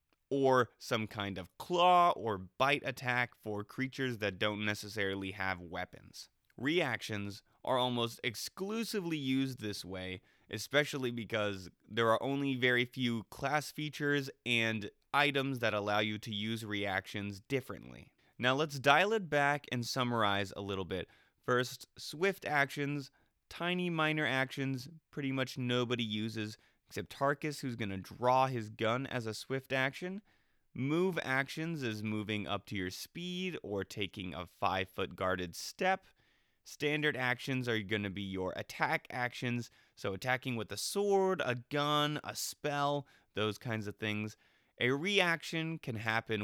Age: 20-39